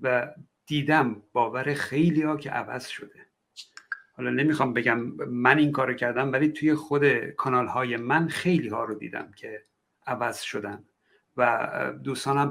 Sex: male